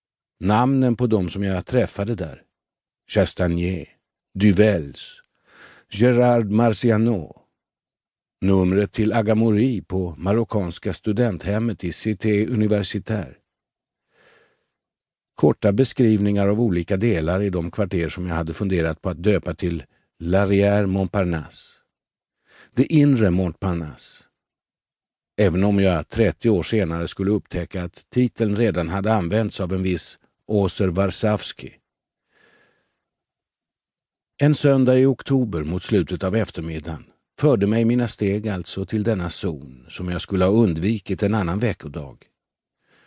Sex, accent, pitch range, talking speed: male, native, 90-115 Hz, 115 wpm